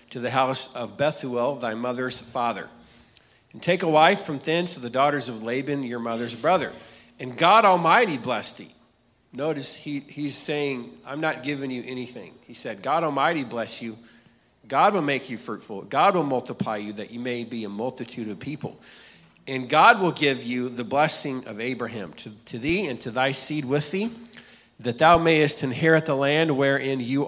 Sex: male